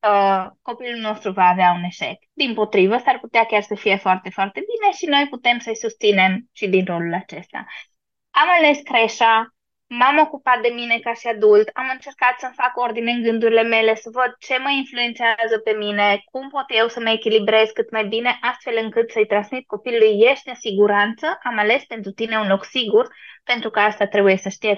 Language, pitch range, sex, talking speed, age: Romanian, 210-260 Hz, female, 195 wpm, 20-39